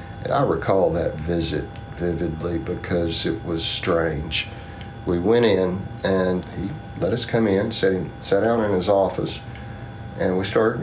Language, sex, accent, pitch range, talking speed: English, male, American, 90-115 Hz, 145 wpm